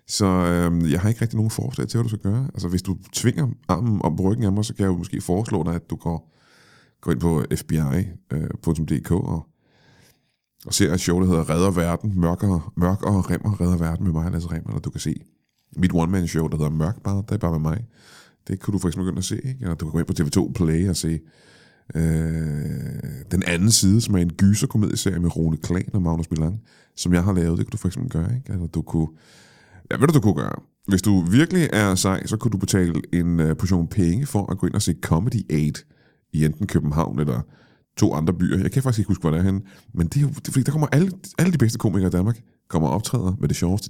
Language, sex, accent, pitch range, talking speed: Danish, male, native, 85-110 Hz, 245 wpm